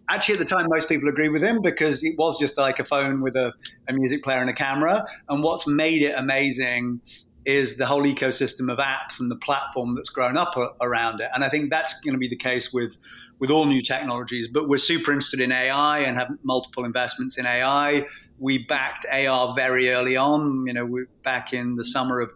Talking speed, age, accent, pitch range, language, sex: 225 wpm, 30-49, British, 125-140 Hz, English, male